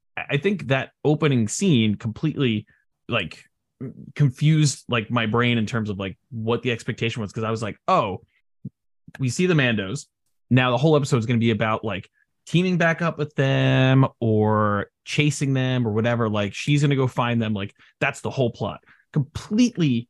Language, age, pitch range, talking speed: English, 20-39, 110-140 Hz, 180 wpm